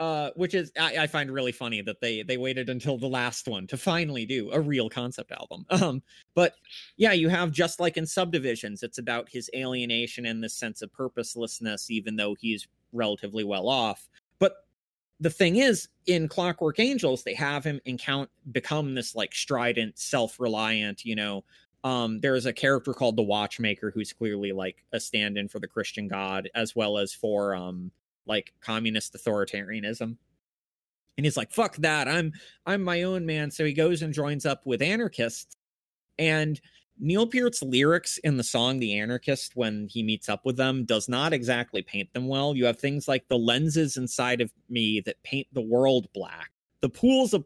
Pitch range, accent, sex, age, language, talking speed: 115-160 Hz, American, male, 30-49, English, 185 wpm